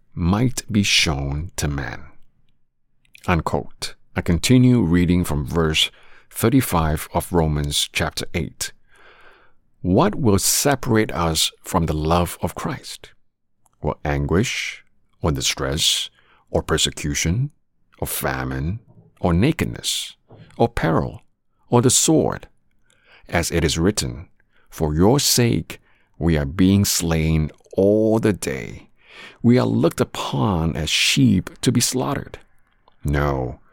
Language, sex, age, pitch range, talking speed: English, male, 50-69, 80-115 Hz, 110 wpm